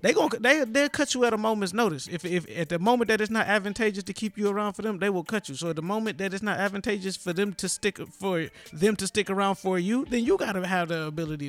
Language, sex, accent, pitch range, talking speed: English, male, American, 165-195 Hz, 285 wpm